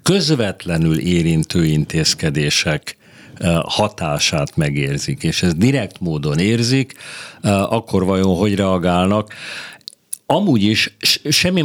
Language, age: Hungarian, 50-69